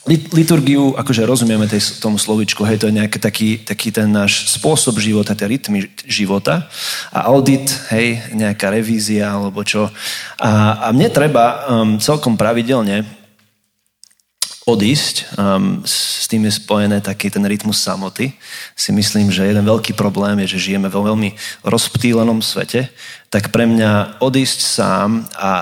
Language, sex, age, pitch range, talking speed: Slovak, male, 30-49, 105-120 Hz, 150 wpm